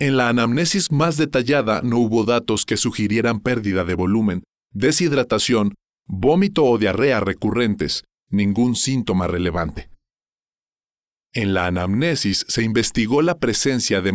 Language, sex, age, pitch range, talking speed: Spanish, male, 40-59, 95-130 Hz, 125 wpm